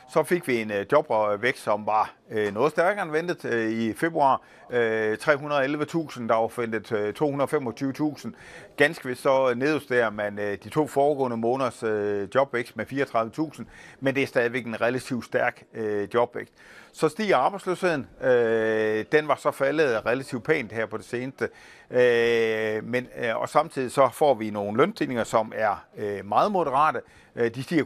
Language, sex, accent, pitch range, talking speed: Danish, male, native, 110-140 Hz, 140 wpm